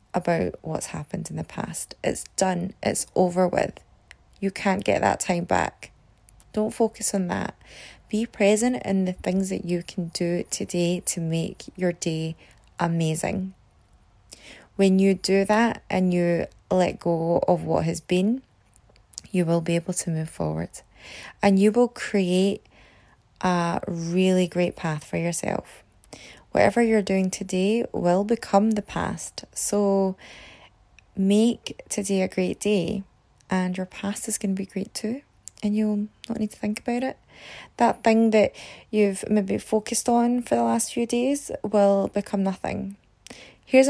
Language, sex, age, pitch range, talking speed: English, female, 20-39, 170-210 Hz, 155 wpm